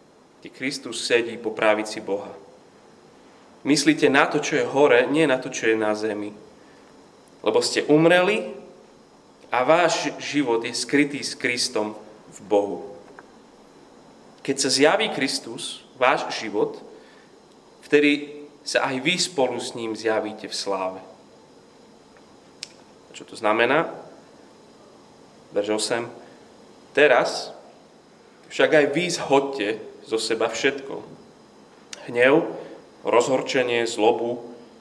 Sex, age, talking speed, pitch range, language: male, 30-49, 110 wpm, 110-145 Hz, Slovak